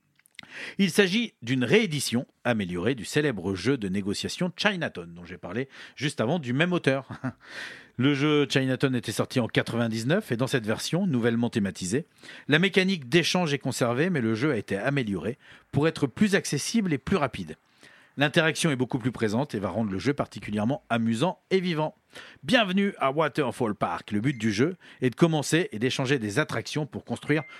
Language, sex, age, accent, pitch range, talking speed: French, male, 40-59, French, 120-165 Hz, 175 wpm